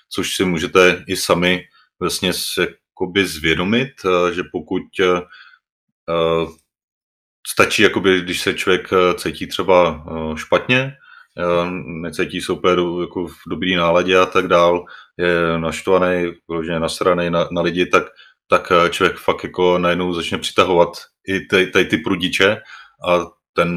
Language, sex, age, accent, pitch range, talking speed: Czech, male, 30-49, native, 85-90 Hz, 115 wpm